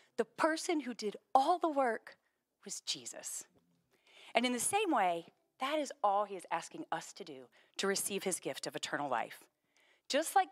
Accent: American